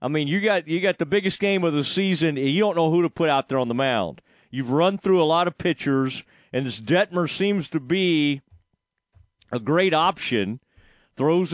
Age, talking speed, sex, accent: 40-59, 215 wpm, male, American